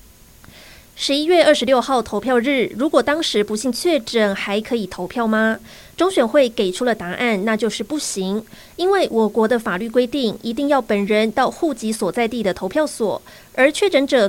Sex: female